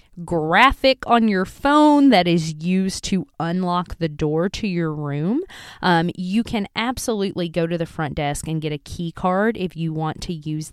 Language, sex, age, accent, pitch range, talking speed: English, female, 20-39, American, 155-205 Hz, 185 wpm